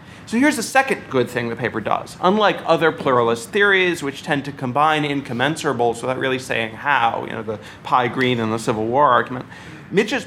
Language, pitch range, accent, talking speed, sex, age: English, 130-170 Hz, American, 195 wpm, male, 40-59